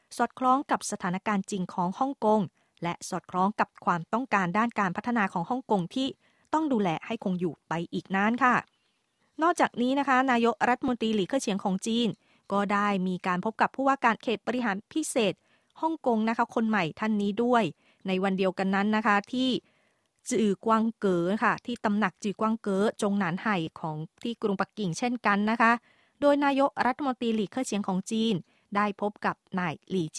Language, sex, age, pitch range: Thai, female, 20-39, 190-240 Hz